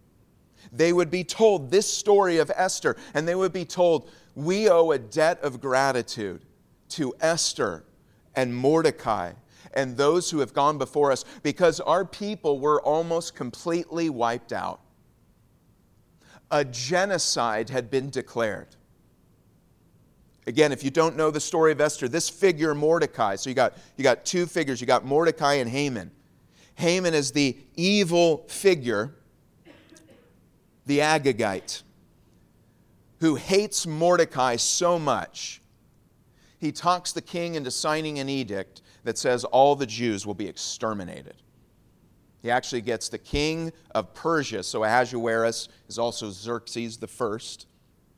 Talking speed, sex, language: 135 wpm, male, English